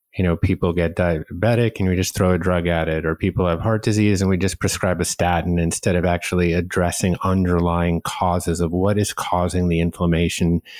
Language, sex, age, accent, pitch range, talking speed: English, male, 30-49, American, 85-105 Hz, 200 wpm